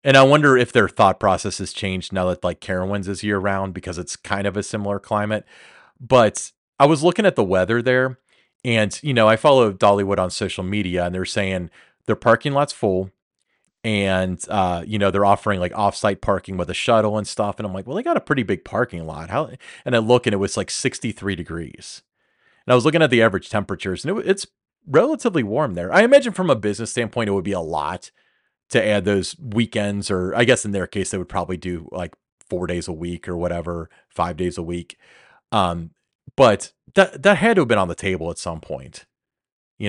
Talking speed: 220 wpm